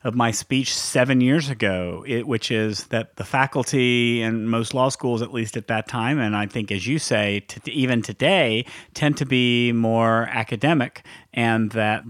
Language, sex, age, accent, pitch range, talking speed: English, male, 40-59, American, 110-135 Hz, 185 wpm